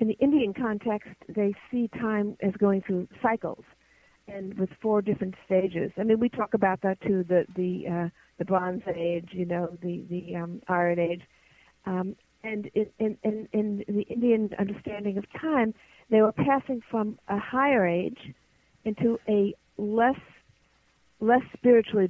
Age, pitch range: 50-69, 190-220 Hz